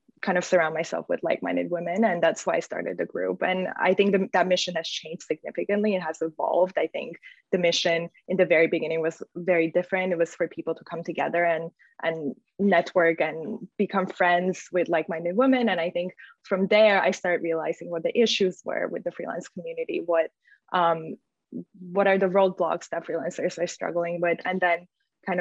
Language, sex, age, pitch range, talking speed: English, female, 20-39, 170-195 Hz, 195 wpm